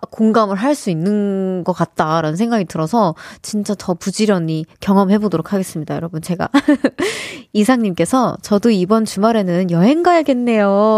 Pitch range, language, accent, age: 185-275 Hz, Korean, native, 20-39